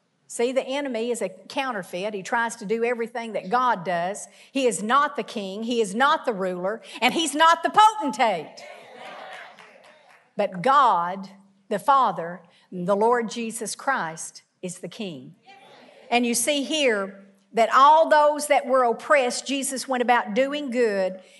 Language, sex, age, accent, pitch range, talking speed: English, female, 50-69, American, 210-295 Hz, 155 wpm